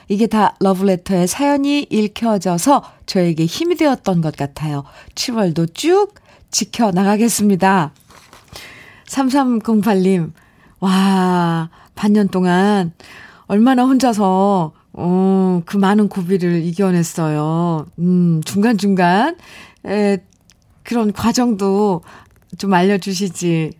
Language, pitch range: Korean, 165-215 Hz